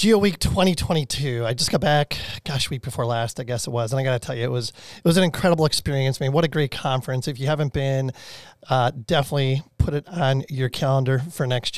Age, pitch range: 30-49, 125-160 Hz